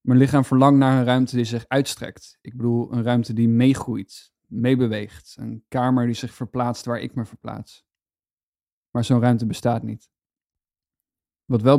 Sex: male